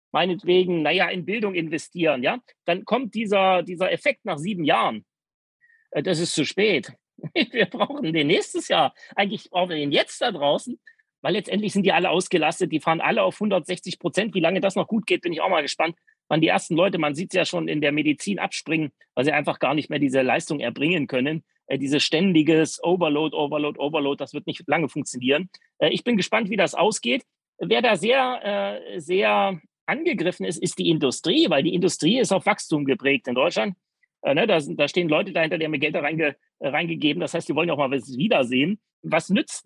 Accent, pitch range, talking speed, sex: German, 155-205 Hz, 205 wpm, male